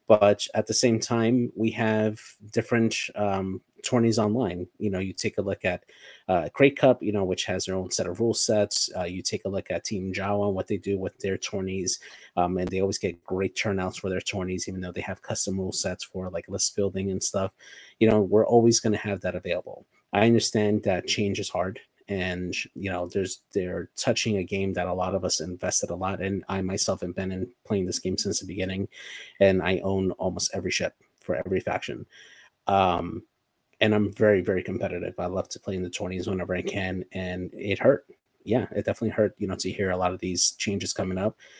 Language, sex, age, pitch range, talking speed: English, male, 30-49, 95-110 Hz, 220 wpm